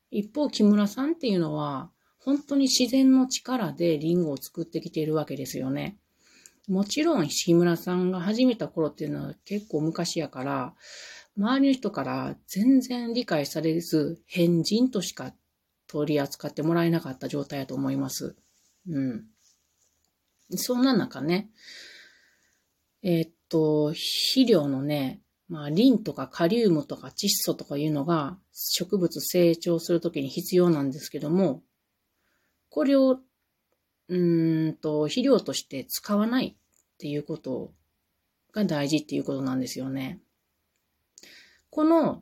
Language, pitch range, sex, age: Japanese, 145-210 Hz, female, 40-59